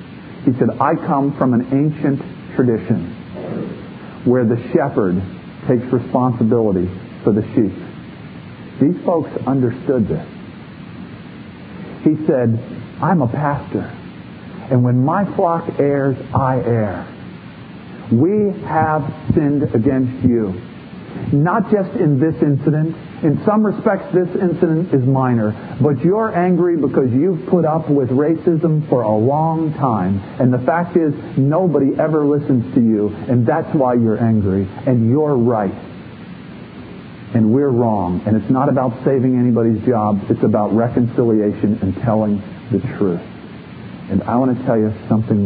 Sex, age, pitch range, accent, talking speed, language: male, 50-69, 110-155 Hz, American, 135 wpm, English